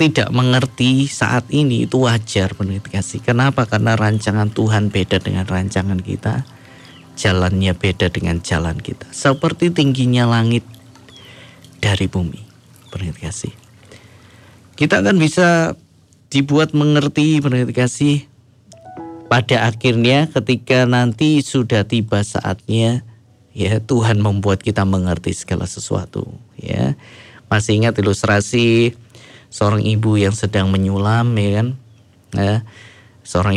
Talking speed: 105 wpm